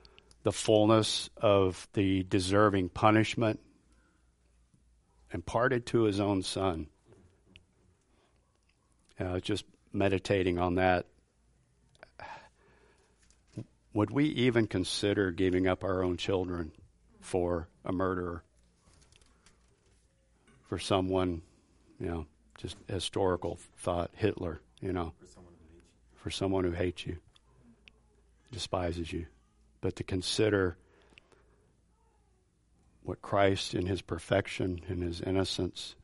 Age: 50-69